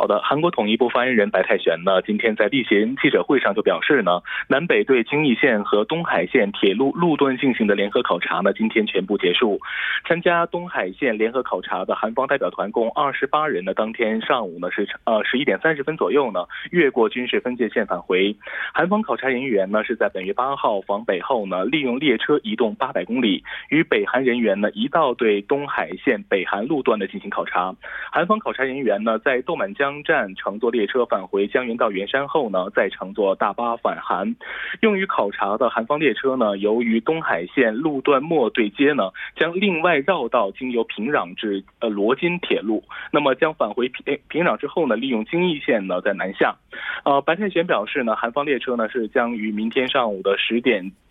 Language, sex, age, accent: Korean, male, 20-39, Chinese